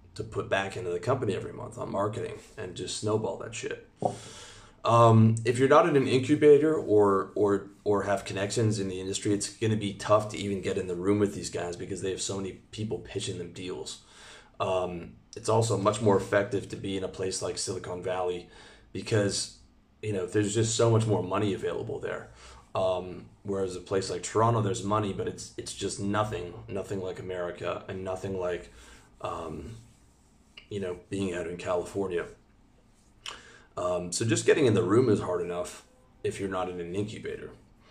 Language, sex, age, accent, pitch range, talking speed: English, male, 30-49, American, 95-110 Hz, 190 wpm